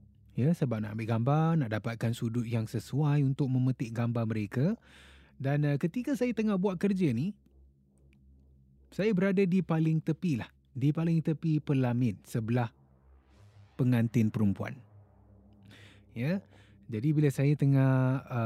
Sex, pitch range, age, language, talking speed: male, 100-145 Hz, 20-39, Malay, 130 wpm